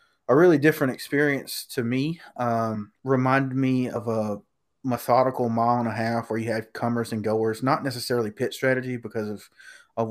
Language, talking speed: English, 170 wpm